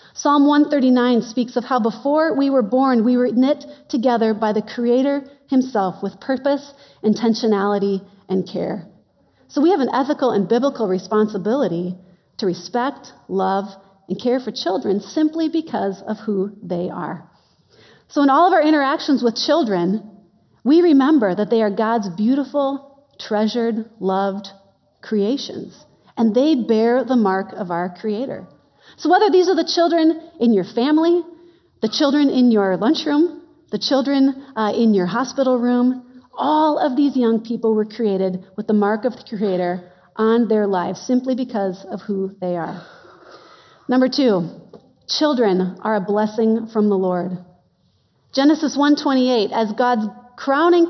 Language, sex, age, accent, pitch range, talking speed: English, female, 40-59, American, 205-280 Hz, 150 wpm